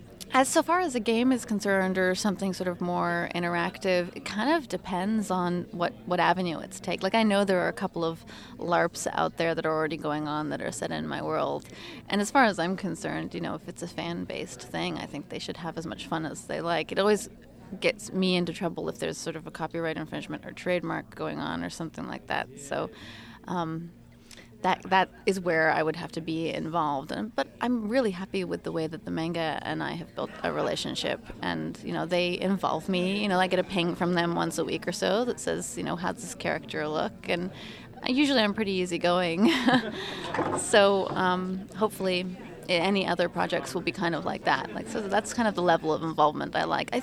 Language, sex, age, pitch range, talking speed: English, female, 20-39, 165-200 Hz, 220 wpm